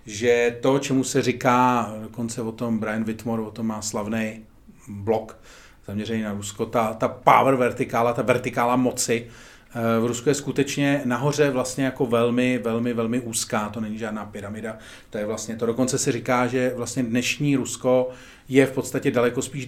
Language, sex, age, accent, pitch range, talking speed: Czech, male, 40-59, native, 115-130 Hz, 170 wpm